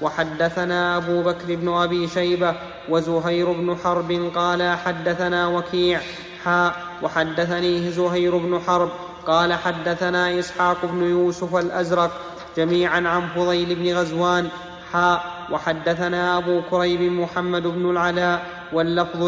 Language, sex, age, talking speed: Arabic, male, 30-49, 110 wpm